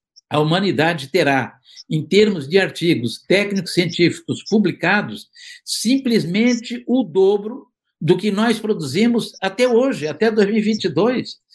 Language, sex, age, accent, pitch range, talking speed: Portuguese, male, 60-79, Brazilian, 155-220 Hz, 105 wpm